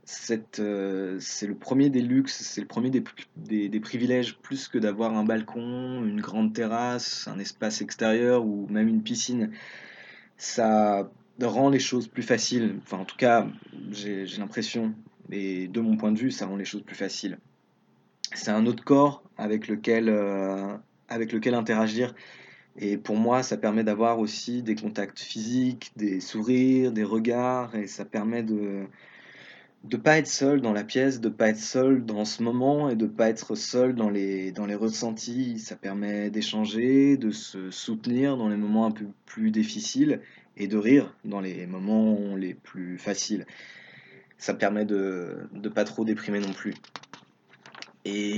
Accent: French